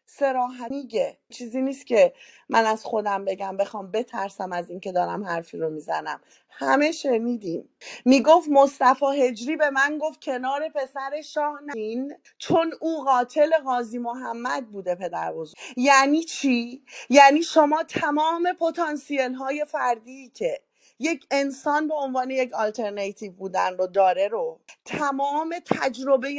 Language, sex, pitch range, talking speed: Persian, female, 225-295 Hz, 130 wpm